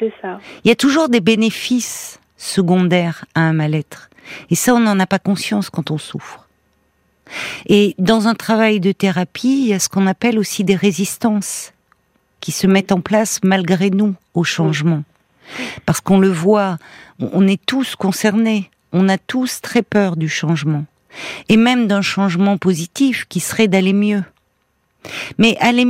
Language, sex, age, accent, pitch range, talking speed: French, female, 50-69, French, 165-215 Hz, 160 wpm